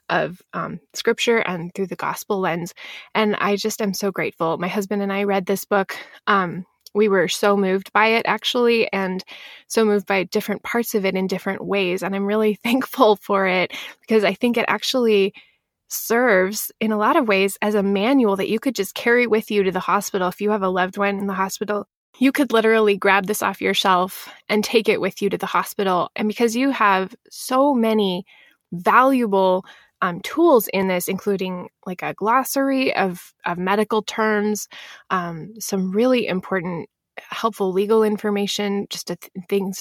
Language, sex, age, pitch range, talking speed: English, female, 20-39, 185-220 Hz, 190 wpm